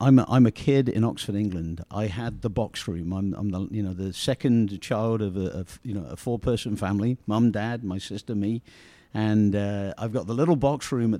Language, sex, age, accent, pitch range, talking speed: English, male, 50-69, British, 100-125 Hz, 230 wpm